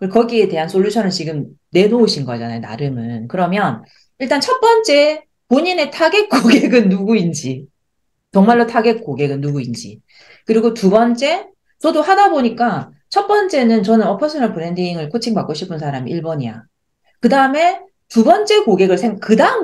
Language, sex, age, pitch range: Korean, female, 40-59, 145-235 Hz